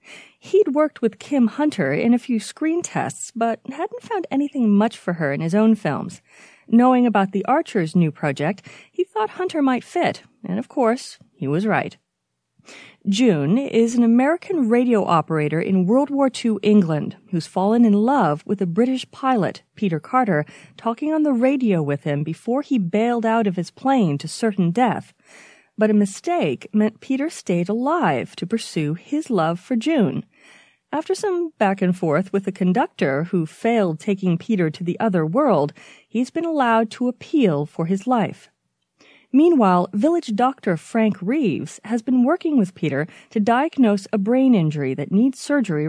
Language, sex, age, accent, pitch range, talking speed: English, female, 40-59, American, 180-255 Hz, 165 wpm